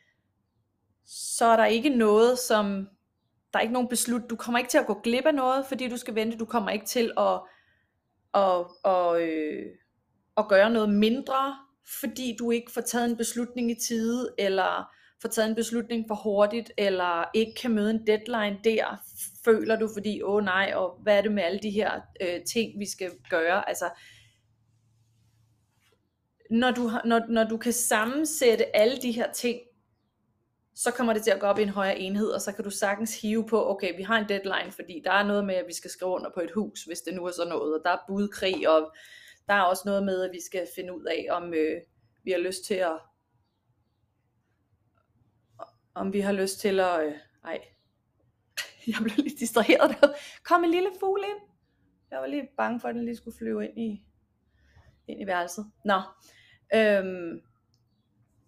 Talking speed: 190 wpm